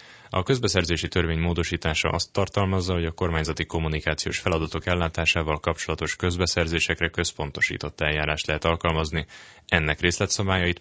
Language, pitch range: Hungarian, 80-90 Hz